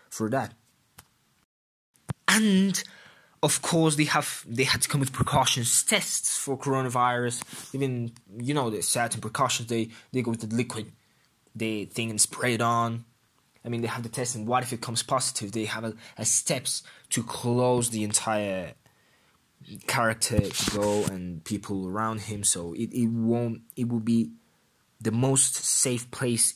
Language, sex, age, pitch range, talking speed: English, male, 20-39, 115-140 Hz, 165 wpm